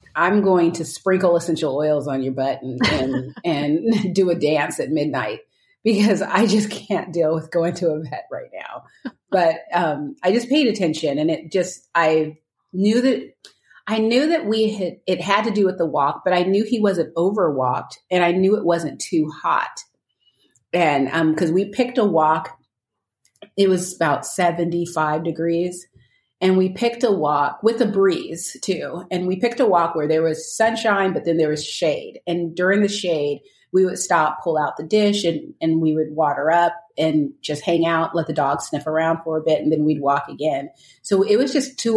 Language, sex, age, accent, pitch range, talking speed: English, female, 30-49, American, 155-195 Hz, 200 wpm